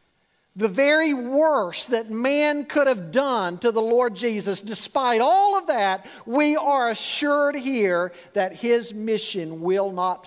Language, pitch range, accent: English, 210-275 Hz, American